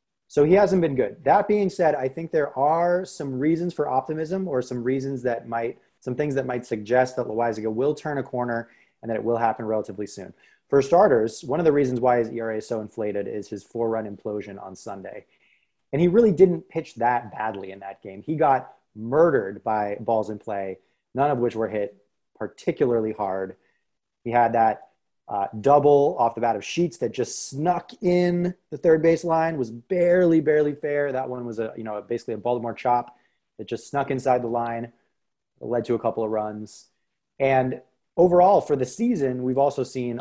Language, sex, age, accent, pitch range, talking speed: English, male, 30-49, American, 110-145 Hz, 195 wpm